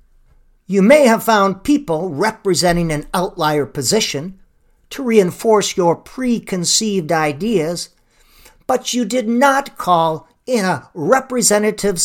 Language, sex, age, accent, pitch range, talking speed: English, male, 50-69, American, 165-235 Hz, 110 wpm